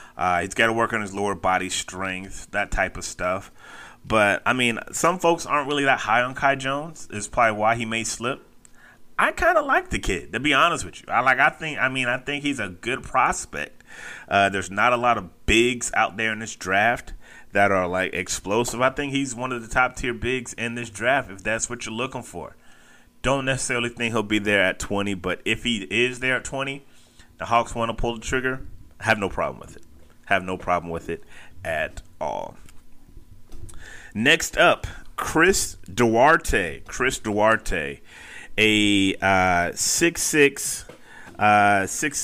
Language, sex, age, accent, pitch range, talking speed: English, male, 30-49, American, 95-130 Hz, 185 wpm